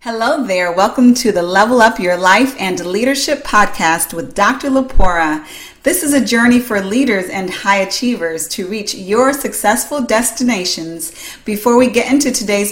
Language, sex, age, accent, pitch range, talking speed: English, female, 40-59, American, 180-240 Hz, 160 wpm